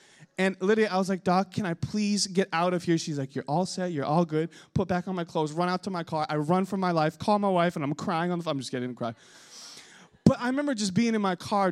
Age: 20-39